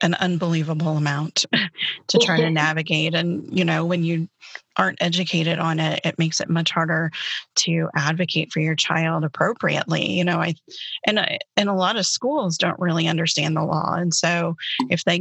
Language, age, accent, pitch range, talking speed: English, 30-49, American, 165-190 Hz, 180 wpm